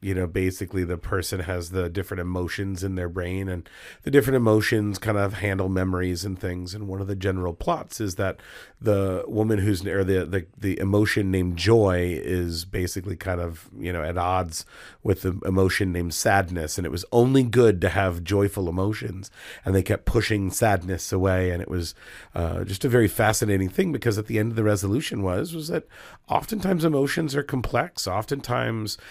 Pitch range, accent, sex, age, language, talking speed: 90-110 Hz, American, male, 30-49, English, 190 wpm